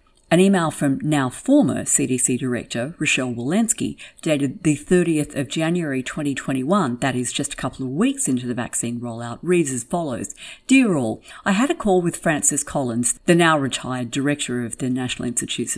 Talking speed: 175 wpm